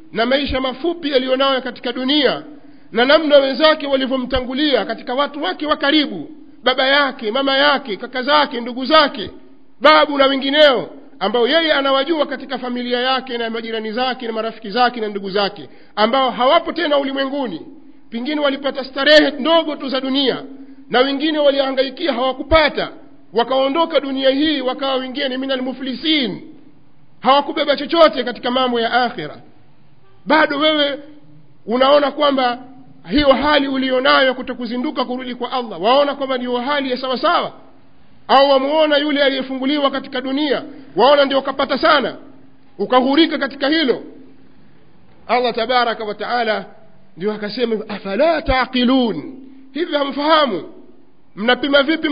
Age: 50-69